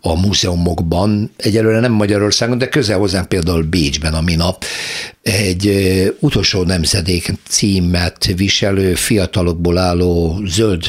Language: Hungarian